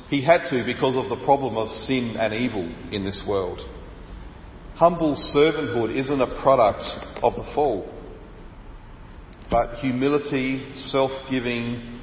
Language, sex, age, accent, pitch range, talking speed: English, male, 40-59, Australian, 100-130 Hz, 125 wpm